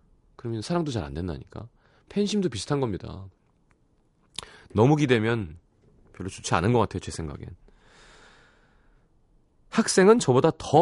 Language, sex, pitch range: Korean, male, 95-155 Hz